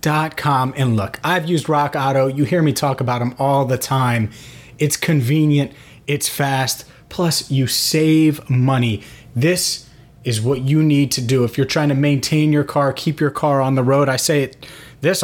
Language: English